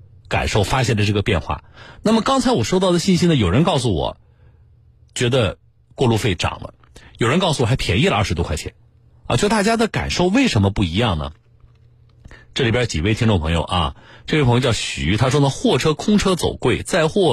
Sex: male